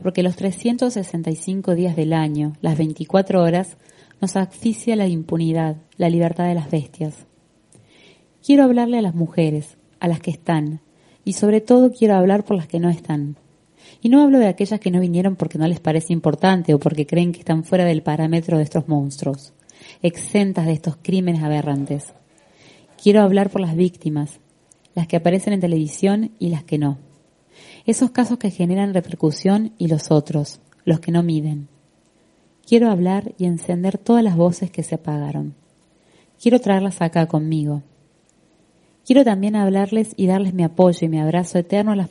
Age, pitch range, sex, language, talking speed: 20-39, 160-195 Hz, female, Spanish, 170 wpm